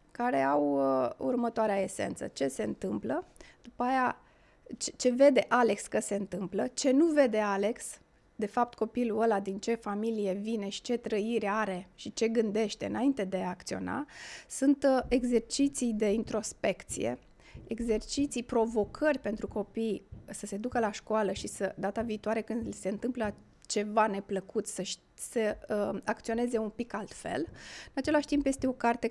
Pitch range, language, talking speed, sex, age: 200-250 Hz, Romanian, 155 wpm, female, 20-39